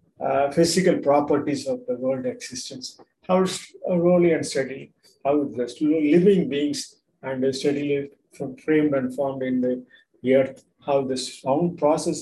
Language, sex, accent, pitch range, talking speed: Tamil, male, native, 125-150 Hz, 155 wpm